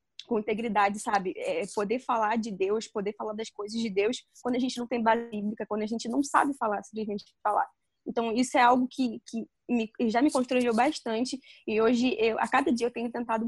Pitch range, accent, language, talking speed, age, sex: 205-245 Hz, Brazilian, Portuguese, 225 wpm, 20-39, female